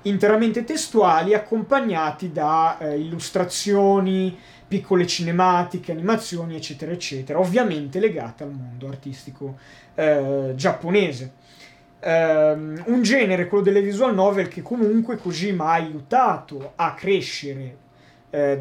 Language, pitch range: Italian, 150-190 Hz